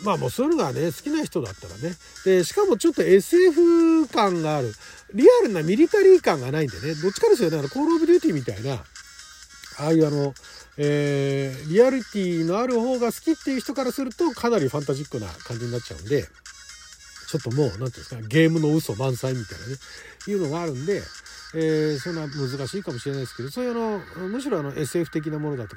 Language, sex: Japanese, male